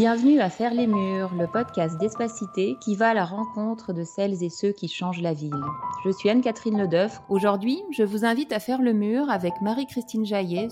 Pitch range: 185-225 Hz